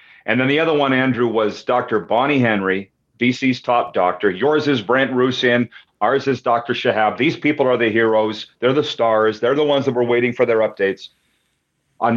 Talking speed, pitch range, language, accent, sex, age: 190 wpm, 115-150 Hz, English, American, male, 40-59